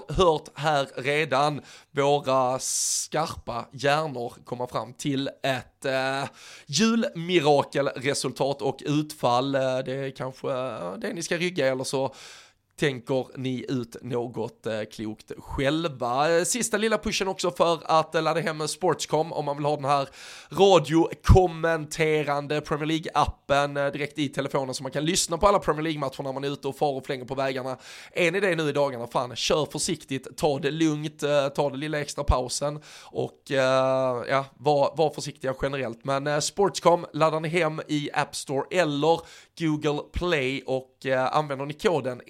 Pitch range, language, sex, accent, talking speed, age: 130-160 Hz, Swedish, male, native, 155 wpm, 20-39